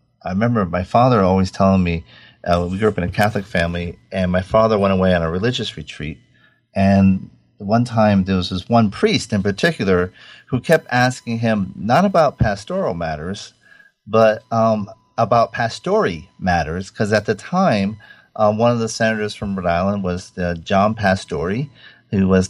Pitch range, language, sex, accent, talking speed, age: 95-120 Hz, English, male, American, 175 wpm, 40-59